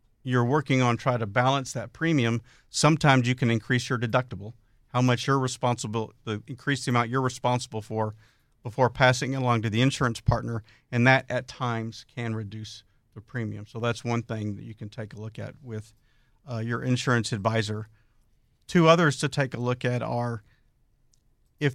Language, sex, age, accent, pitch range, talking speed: English, male, 50-69, American, 115-130 Hz, 180 wpm